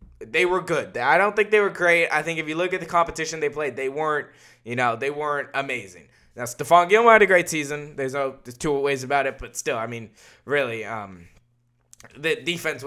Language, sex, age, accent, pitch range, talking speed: English, male, 10-29, American, 135-180 Hz, 225 wpm